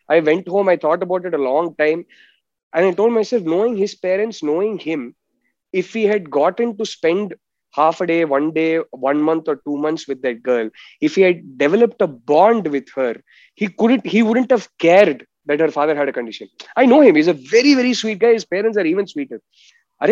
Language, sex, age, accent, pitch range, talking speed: Telugu, male, 20-39, native, 160-235 Hz, 210 wpm